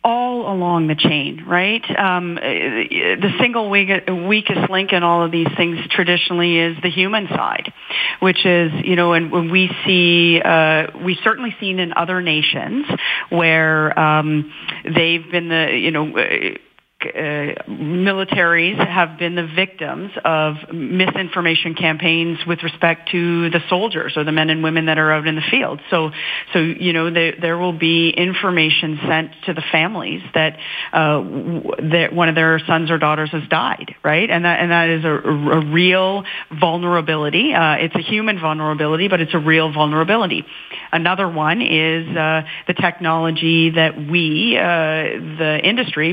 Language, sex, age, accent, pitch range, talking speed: English, female, 40-59, American, 155-180 Hz, 160 wpm